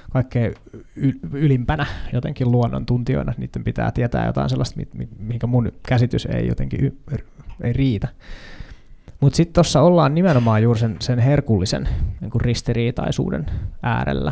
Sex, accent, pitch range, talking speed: male, native, 105-130 Hz, 140 wpm